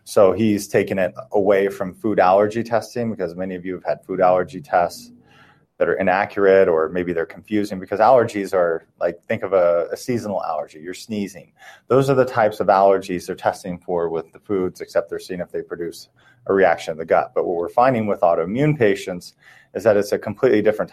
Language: English